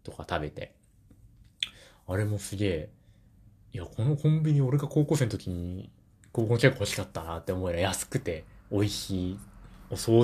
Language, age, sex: Japanese, 20-39, male